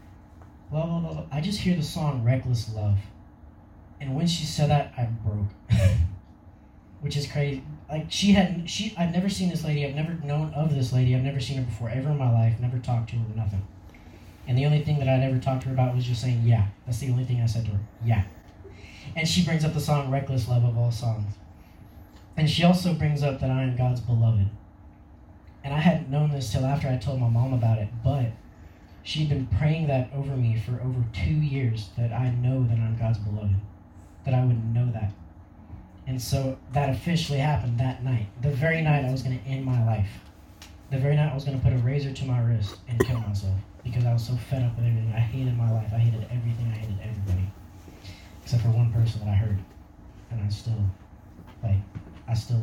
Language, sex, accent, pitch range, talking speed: English, male, American, 100-135 Hz, 220 wpm